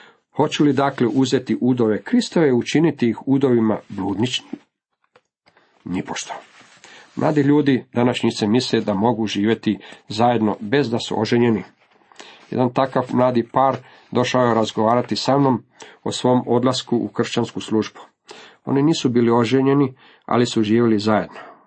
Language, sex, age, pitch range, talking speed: Croatian, male, 50-69, 105-140 Hz, 130 wpm